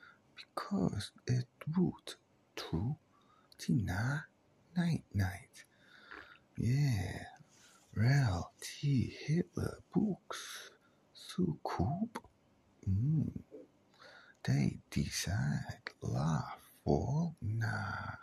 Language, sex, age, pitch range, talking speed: English, male, 50-69, 100-155 Hz, 70 wpm